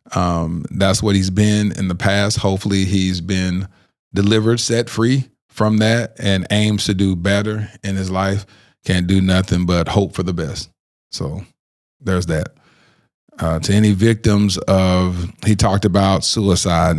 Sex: male